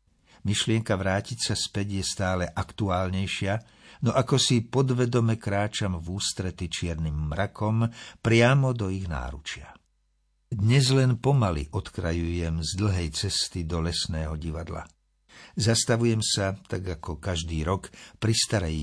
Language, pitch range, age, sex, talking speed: Slovak, 85-115 Hz, 60-79, male, 120 wpm